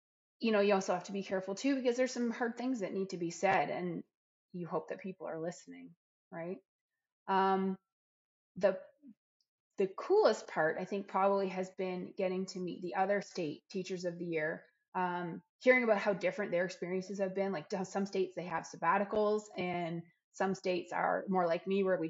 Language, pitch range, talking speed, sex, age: English, 175-200 Hz, 195 wpm, female, 20-39